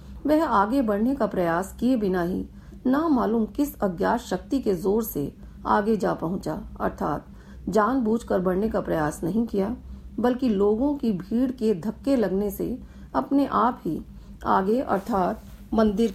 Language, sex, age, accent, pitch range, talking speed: Hindi, female, 40-59, native, 190-240 Hz, 150 wpm